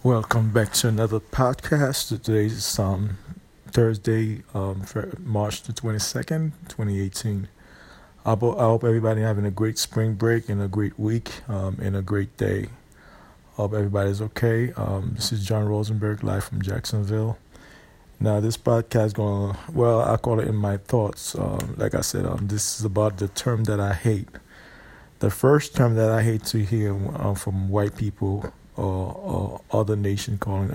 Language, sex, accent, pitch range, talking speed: English, male, American, 100-115 Hz, 170 wpm